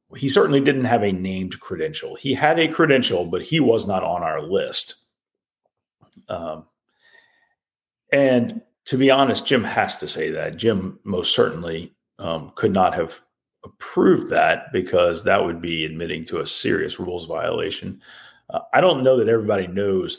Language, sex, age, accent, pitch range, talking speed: English, male, 40-59, American, 95-150 Hz, 160 wpm